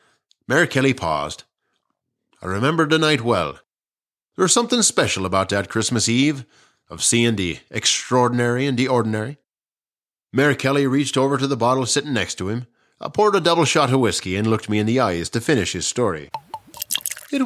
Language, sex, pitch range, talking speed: English, male, 105-155 Hz, 180 wpm